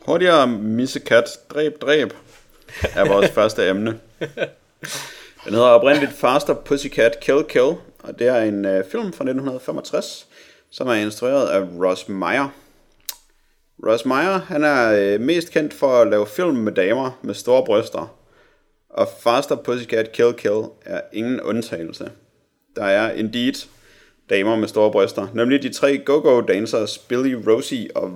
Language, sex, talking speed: Danish, male, 135 wpm